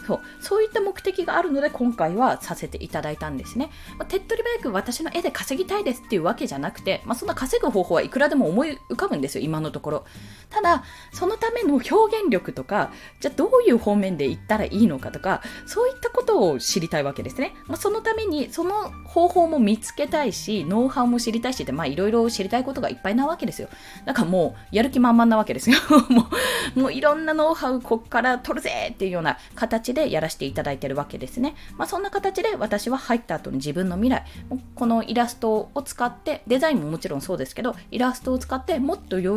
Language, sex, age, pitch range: Japanese, female, 20-39, 190-300 Hz